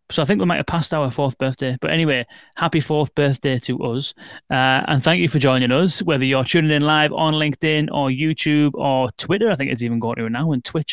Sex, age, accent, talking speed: male, 30-49, British, 245 wpm